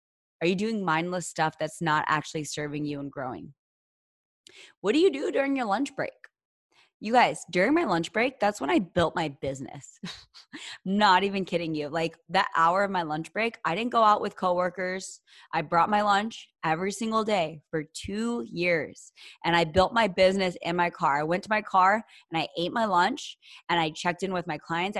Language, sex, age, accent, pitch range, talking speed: English, female, 20-39, American, 165-205 Hz, 200 wpm